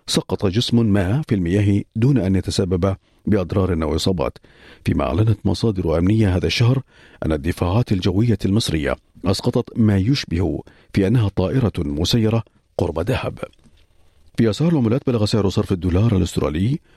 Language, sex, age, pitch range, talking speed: Arabic, male, 50-69, 90-115 Hz, 135 wpm